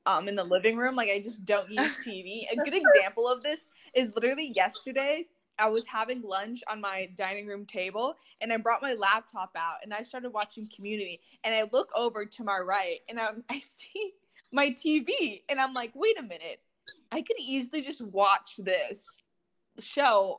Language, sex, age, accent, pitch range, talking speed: English, female, 10-29, American, 200-270 Hz, 190 wpm